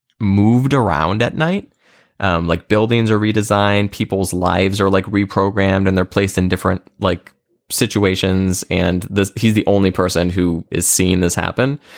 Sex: male